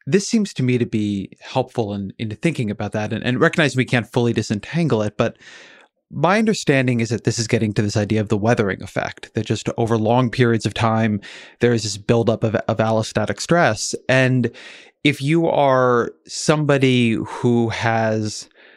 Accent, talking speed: American, 180 wpm